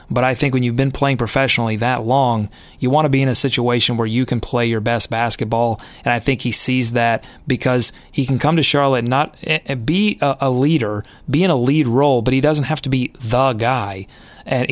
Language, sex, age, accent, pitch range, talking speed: English, male, 30-49, American, 120-145 Hz, 225 wpm